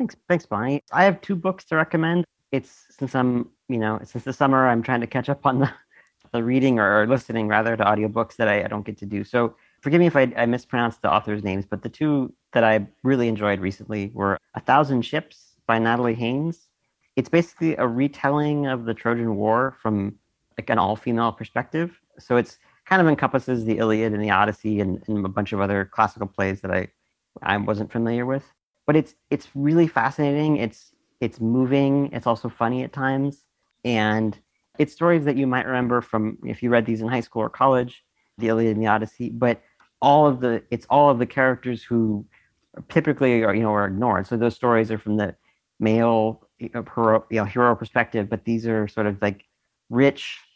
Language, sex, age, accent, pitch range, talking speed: English, male, 40-59, American, 110-135 Hz, 205 wpm